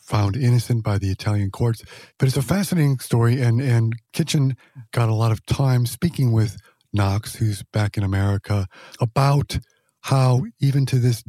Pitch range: 105-125 Hz